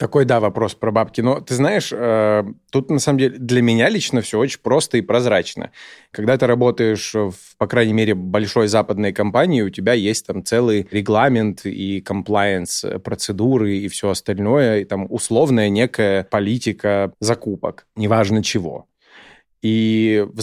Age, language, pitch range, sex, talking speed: 20-39, Russian, 105-115 Hz, male, 155 wpm